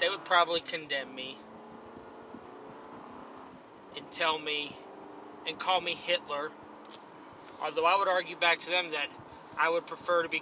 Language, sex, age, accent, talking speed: English, male, 20-39, American, 145 wpm